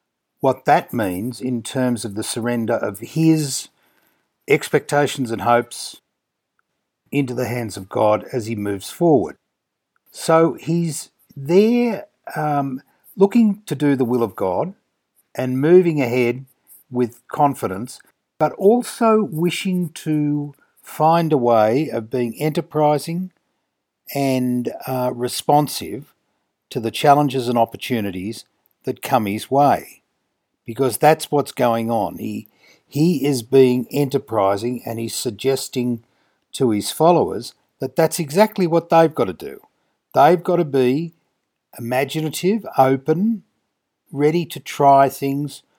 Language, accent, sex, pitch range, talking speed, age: English, Australian, male, 120-155 Hz, 125 wpm, 50-69